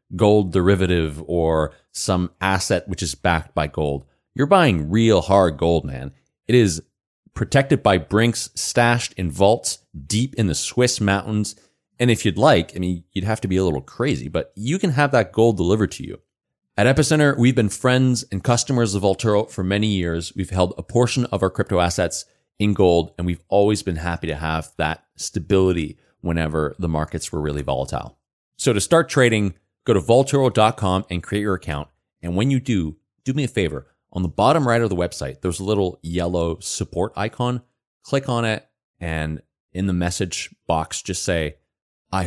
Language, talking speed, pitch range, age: English, 185 wpm, 85-115 Hz, 30-49